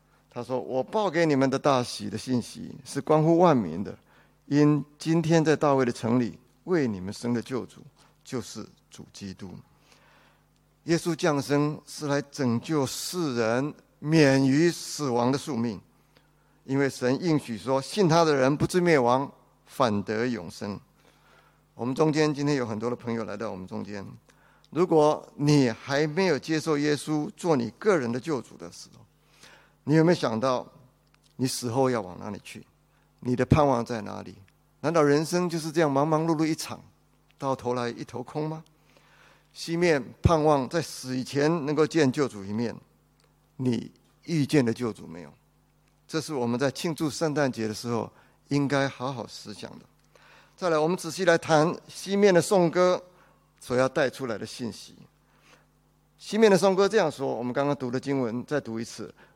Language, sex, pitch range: English, male, 120-160 Hz